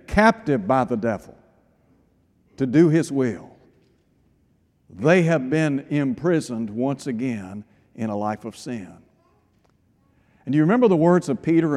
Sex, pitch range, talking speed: male, 135-170 Hz, 140 wpm